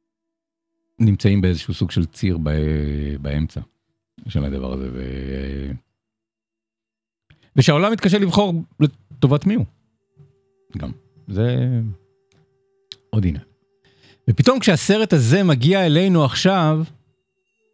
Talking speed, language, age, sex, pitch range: 85 wpm, Hebrew, 50-69, male, 105-160 Hz